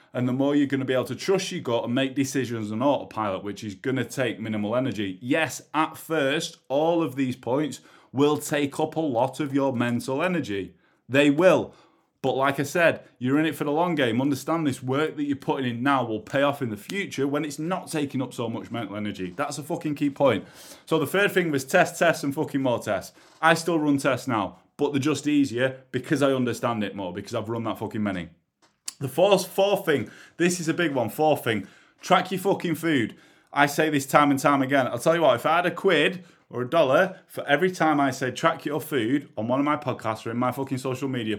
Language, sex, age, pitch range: English, male, 30-49, 125-155 Hz